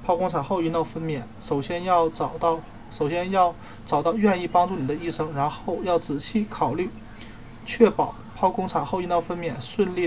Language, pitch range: Chinese, 140-180 Hz